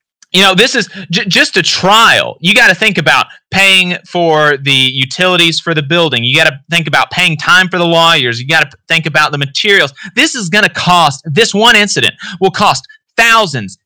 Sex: male